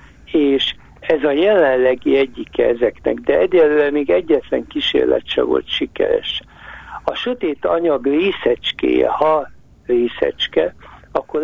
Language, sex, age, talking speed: Hungarian, male, 60-79, 110 wpm